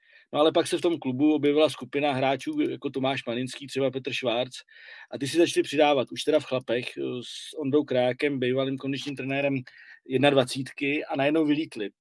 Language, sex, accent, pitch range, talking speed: Czech, male, native, 130-150 Hz, 175 wpm